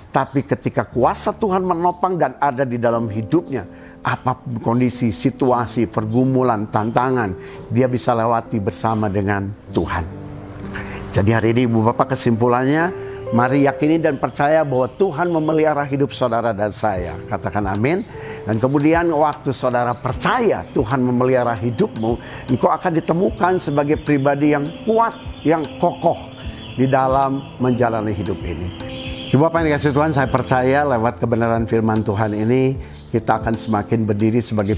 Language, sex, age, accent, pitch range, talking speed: Indonesian, male, 50-69, native, 105-130 Hz, 135 wpm